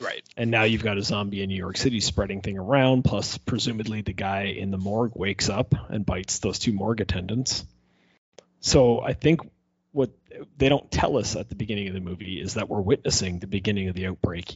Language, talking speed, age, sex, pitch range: English, 215 wpm, 30-49, male, 95-115 Hz